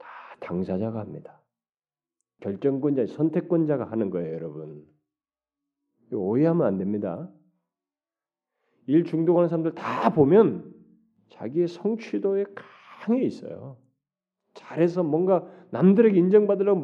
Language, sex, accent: Korean, male, native